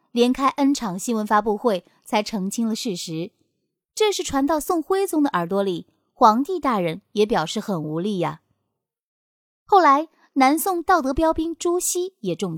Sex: female